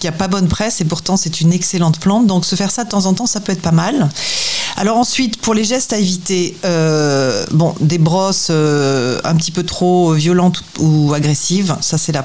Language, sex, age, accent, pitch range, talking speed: French, female, 40-59, French, 155-185 Hz, 225 wpm